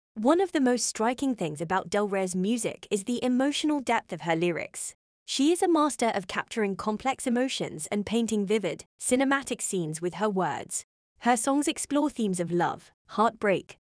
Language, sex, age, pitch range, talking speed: English, female, 20-39, 185-255 Hz, 175 wpm